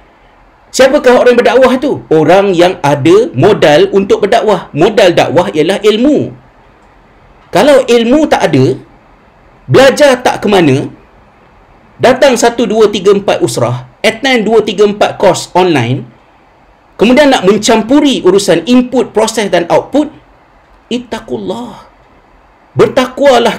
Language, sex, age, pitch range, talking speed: Malay, male, 50-69, 150-245 Hz, 115 wpm